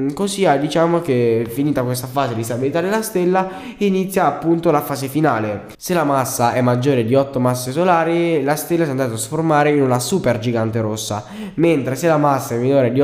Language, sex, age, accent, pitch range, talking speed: Italian, male, 10-29, native, 125-170 Hz, 200 wpm